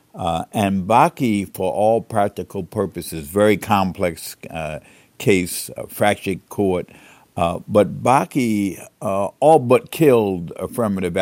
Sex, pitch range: male, 85-105 Hz